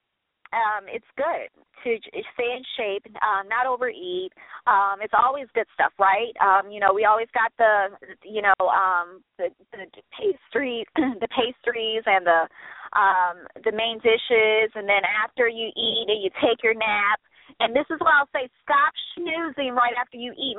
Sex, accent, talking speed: female, American, 170 wpm